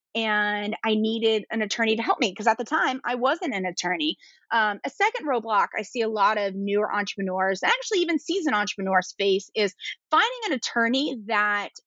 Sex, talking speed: female, 185 wpm